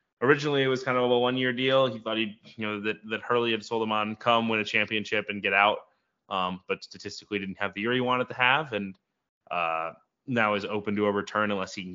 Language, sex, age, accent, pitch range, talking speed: English, male, 20-39, American, 95-110 Hz, 250 wpm